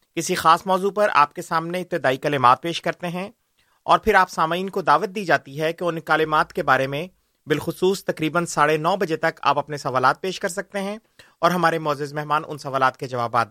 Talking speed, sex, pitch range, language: 215 wpm, male, 145-180 Hz, Urdu